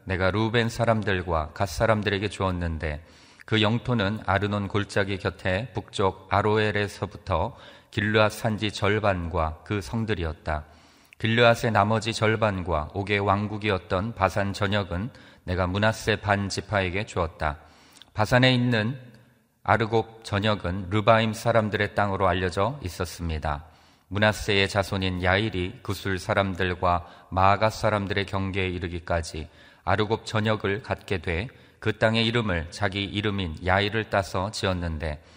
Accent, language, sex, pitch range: native, Korean, male, 90-110 Hz